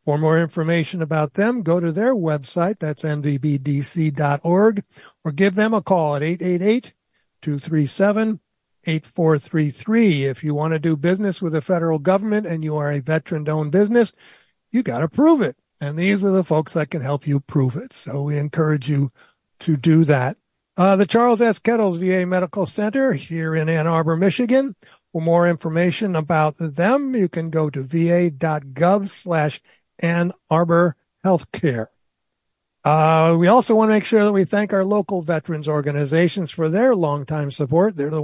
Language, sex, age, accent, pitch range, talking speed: English, male, 60-79, American, 155-195 Hz, 165 wpm